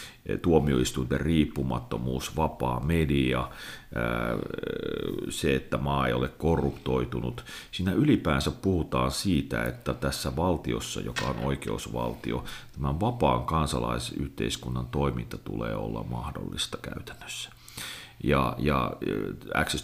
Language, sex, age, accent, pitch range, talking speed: Finnish, male, 40-59, native, 65-80 Hz, 95 wpm